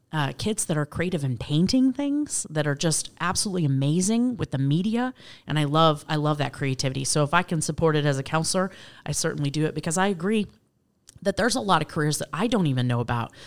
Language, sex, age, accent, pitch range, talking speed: English, female, 30-49, American, 130-155 Hz, 225 wpm